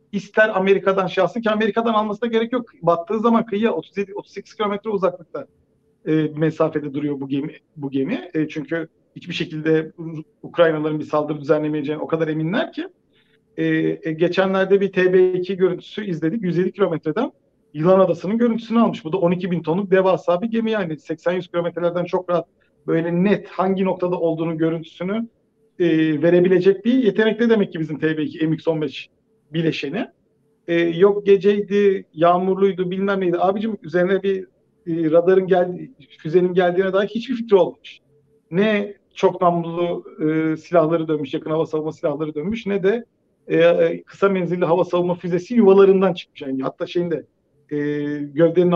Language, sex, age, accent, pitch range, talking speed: Turkish, male, 50-69, native, 160-200 Hz, 150 wpm